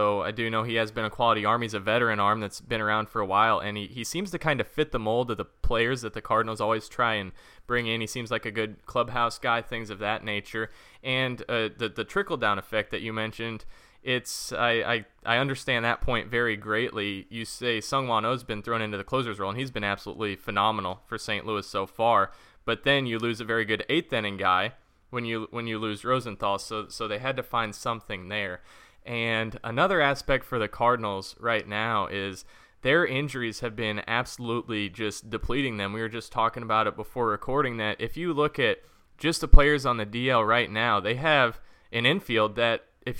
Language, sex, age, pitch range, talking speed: English, male, 20-39, 105-120 Hz, 220 wpm